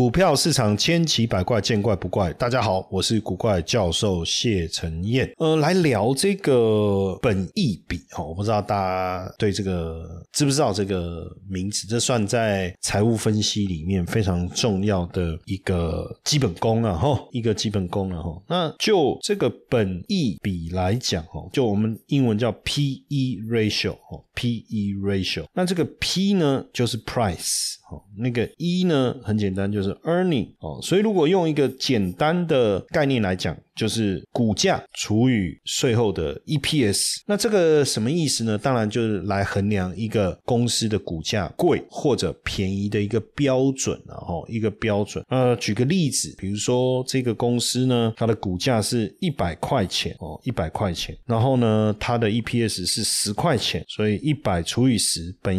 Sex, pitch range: male, 95-125 Hz